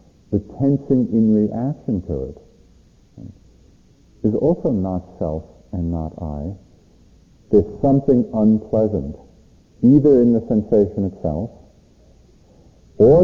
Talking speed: 100 wpm